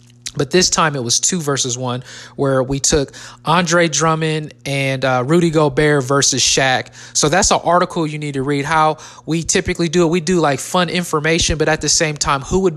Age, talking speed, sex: 20-39, 205 wpm, male